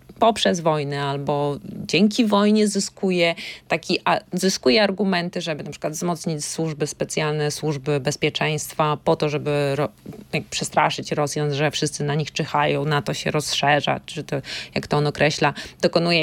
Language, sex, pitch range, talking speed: Polish, female, 160-210 Hz, 145 wpm